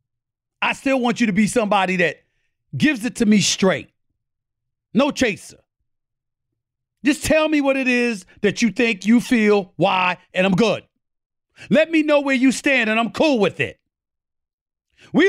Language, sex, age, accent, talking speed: English, male, 40-59, American, 165 wpm